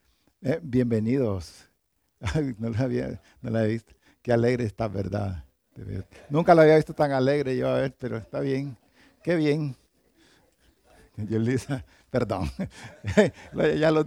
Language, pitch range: Spanish, 120-170 Hz